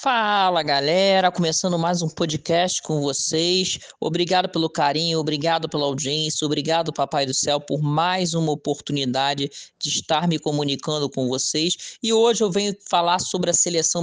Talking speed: 155 wpm